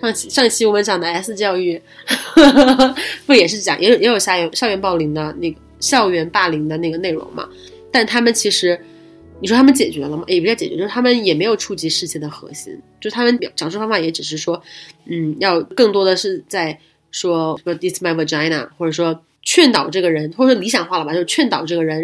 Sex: female